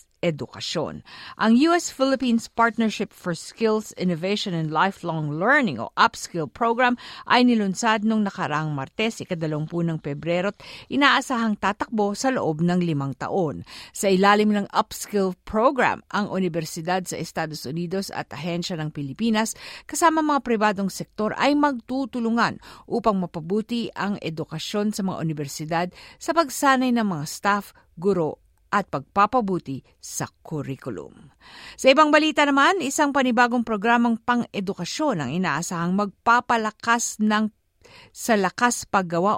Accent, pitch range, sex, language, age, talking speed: native, 170-230 Hz, female, Filipino, 50-69, 125 wpm